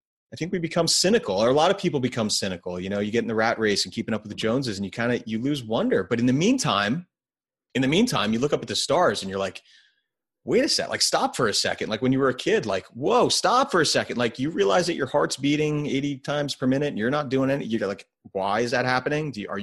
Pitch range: 100-140 Hz